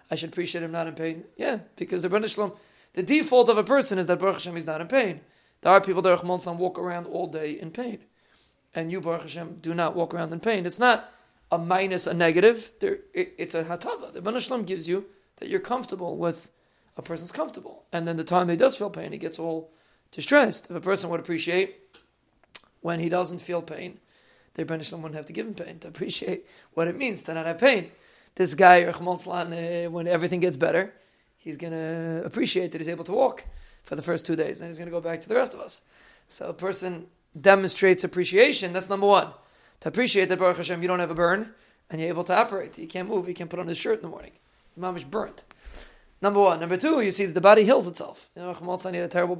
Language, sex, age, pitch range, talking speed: English, male, 30-49, 170-195 Hz, 235 wpm